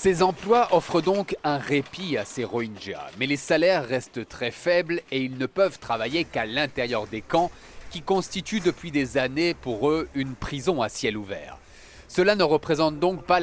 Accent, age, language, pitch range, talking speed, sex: French, 30-49, French, 130-175 Hz, 185 wpm, male